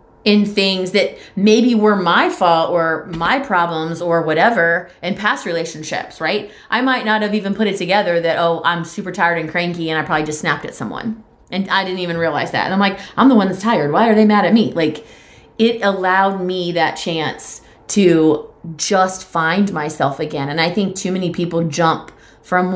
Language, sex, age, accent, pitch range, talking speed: English, female, 30-49, American, 165-210 Hz, 205 wpm